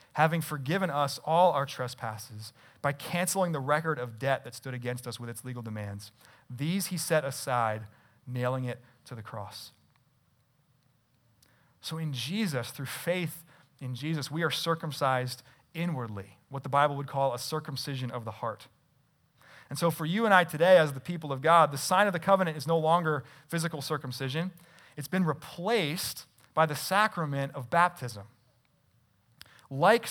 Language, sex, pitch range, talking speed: English, male, 125-165 Hz, 160 wpm